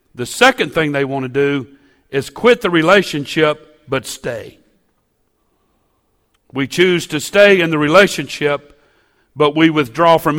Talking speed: 140 wpm